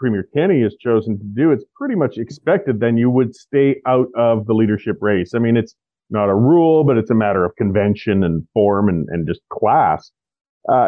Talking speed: 210 wpm